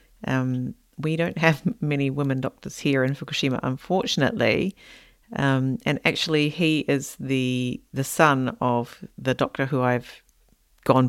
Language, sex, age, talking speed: English, female, 40-59, 135 wpm